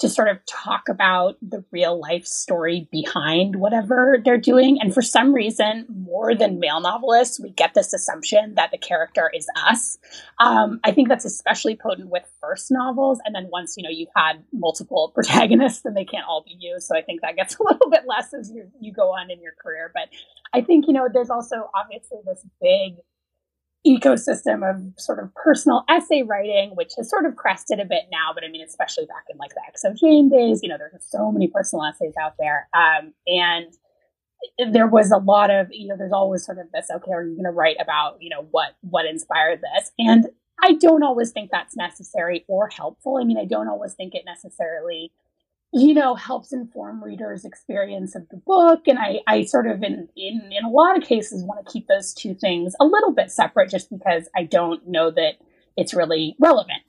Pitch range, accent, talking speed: 180-275 Hz, American, 210 wpm